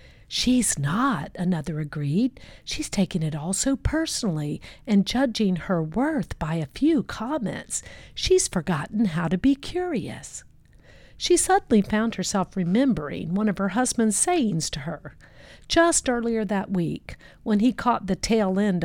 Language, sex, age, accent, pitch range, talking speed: English, female, 50-69, American, 165-235 Hz, 145 wpm